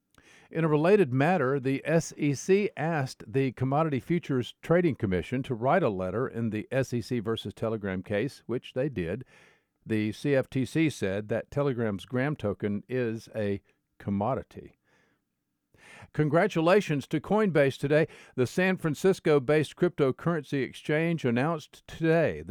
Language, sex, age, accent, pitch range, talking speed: English, male, 50-69, American, 115-160 Hz, 125 wpm